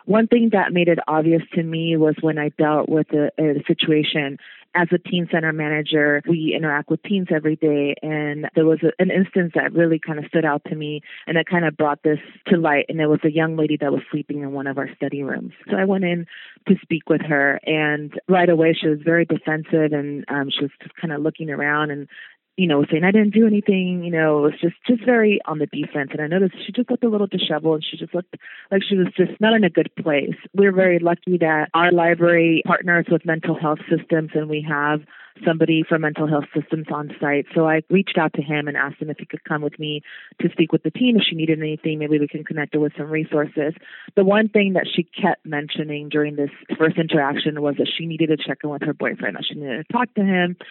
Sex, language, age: female, English, 30-49